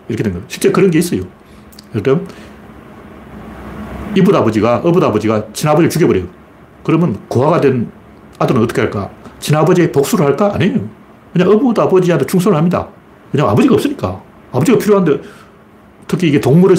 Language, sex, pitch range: Korean, male, 115-180 Hz